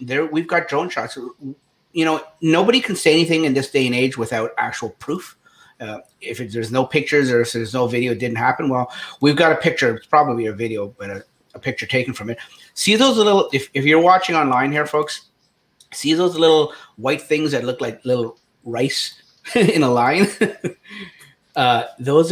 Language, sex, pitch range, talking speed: English, male, 120-160 Hz, 200 wpm